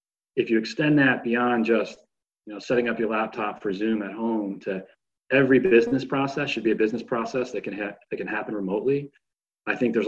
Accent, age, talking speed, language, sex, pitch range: American, 30-49, 210 wpm, English, male, 100-115 Hz